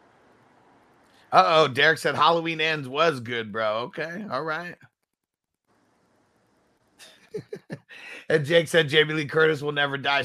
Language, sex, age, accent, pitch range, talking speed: English, male, 30-49, American, 125-160 Hz, 125 wpm